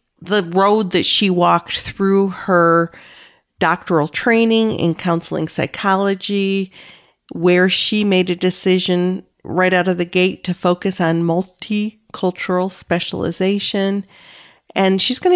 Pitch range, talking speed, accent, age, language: 180-220 Hz, 115 wpm, American, 50-69, English